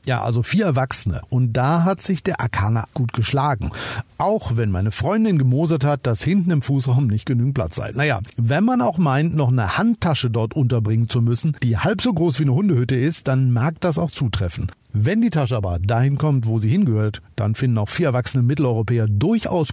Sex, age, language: male, 50-69, German